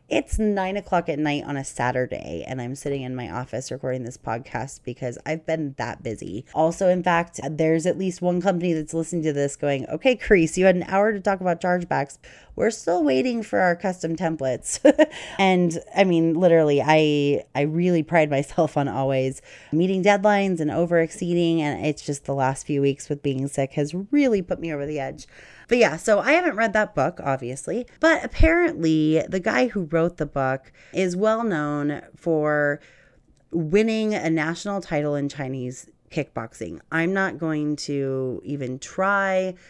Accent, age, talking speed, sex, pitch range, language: American, 30-49, 180 wpm, female, 145-190 Hz, English